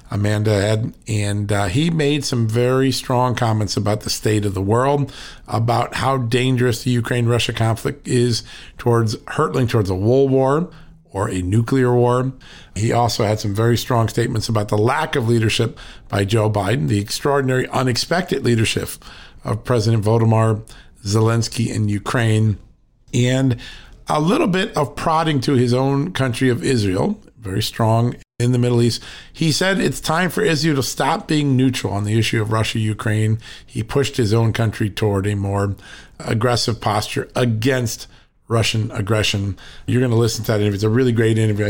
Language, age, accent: English, 50-69, American